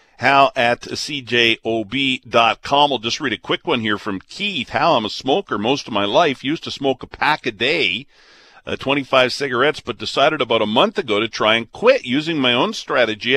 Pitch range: 105-135 Hz